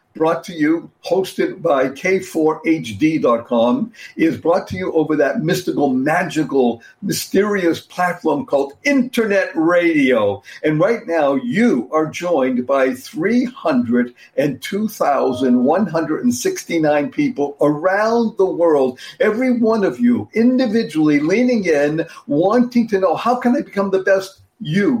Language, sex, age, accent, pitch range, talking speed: English, male, 60-79, American, 155-235 Hz, 115 wpm